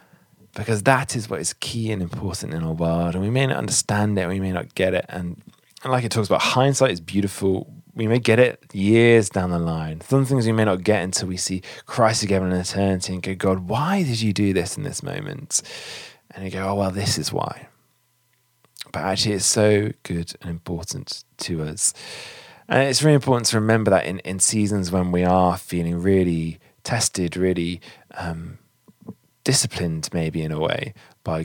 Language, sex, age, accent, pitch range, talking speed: English, male, 20-39, British, 85-115 Hz, 195 wpm